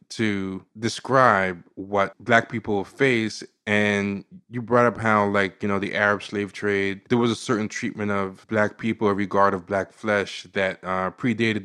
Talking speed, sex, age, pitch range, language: 175 wpm, male, 20-39, 100-120 Hz, English